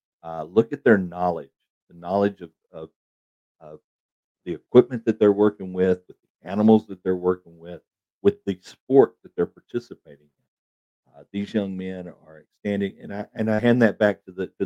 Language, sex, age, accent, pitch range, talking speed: English, male, 50-69, American, 85-105 Hz, 190 wpm